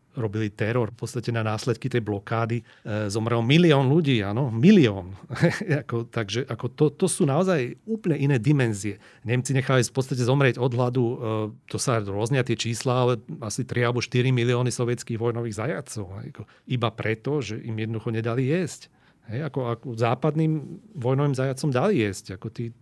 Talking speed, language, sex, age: 175 wpm, Slovak, male, 40-59